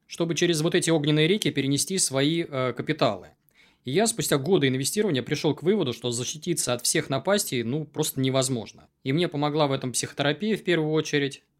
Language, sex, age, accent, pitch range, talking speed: Russian, male, 20-39, native, 130-165 Hz, 180 wpm